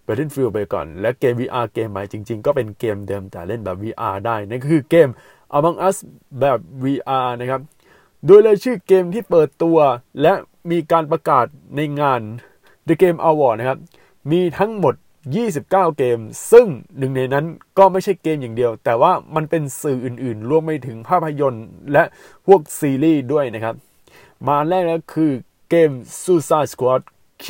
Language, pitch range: Thai, 115-160 Hz